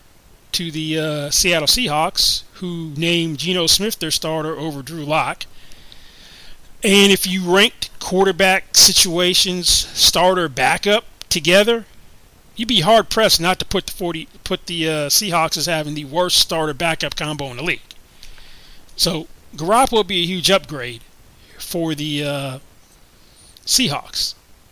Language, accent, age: English, American, 30-49